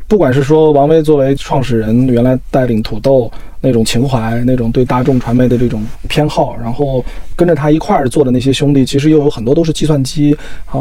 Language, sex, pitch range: Chinese, male, 120-155 Hz